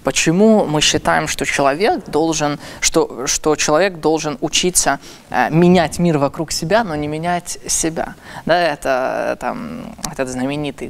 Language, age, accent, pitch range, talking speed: Russian, 20-39, native, 140-170 Hz, 140 wpm